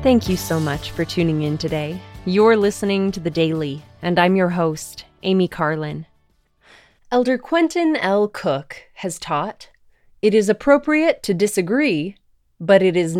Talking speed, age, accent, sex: 150 wpm, 20-39, American, female